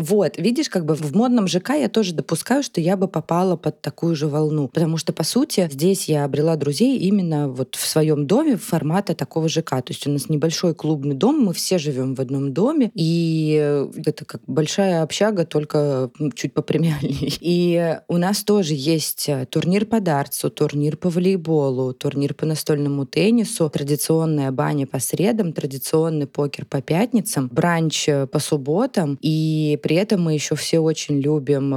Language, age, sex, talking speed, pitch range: Russian, 20-39, female, 170 wpm, 140-175 Hz